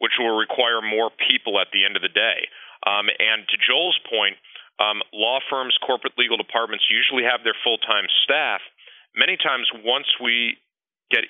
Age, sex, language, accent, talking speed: 40-59, male, English, American, 170 wpm